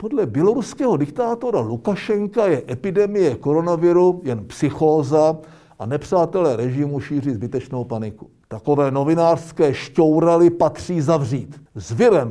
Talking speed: 100 wpm